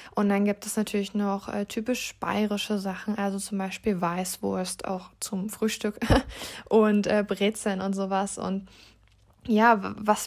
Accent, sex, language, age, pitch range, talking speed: German, female, Italian, 20-39, 200-220 Hz, 145 wpm